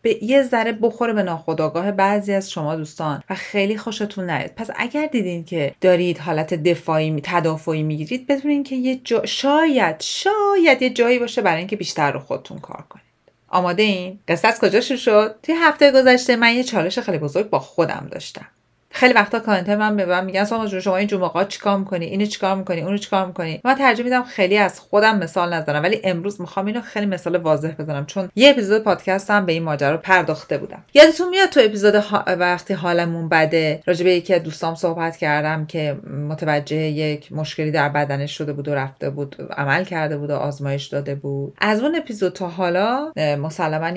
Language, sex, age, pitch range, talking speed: Persian, female, 30-49, 160-230 Hz, 190 wpm